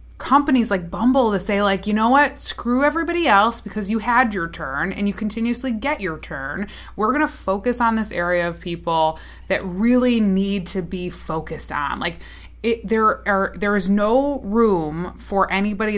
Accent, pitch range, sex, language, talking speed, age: American, 175-225 Hz, female, English, 185 wpm, 20-39